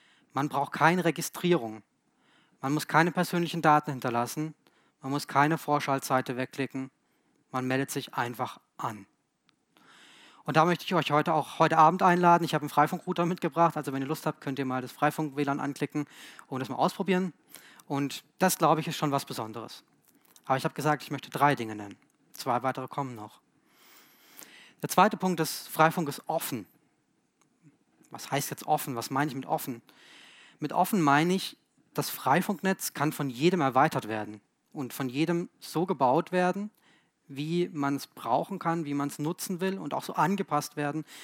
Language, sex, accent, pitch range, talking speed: German, male, German, 140-170 Hz, 175 wpm